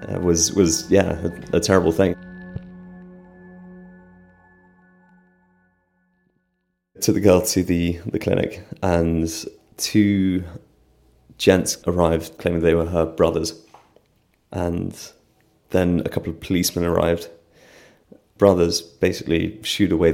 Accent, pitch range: British, 80-90 Hz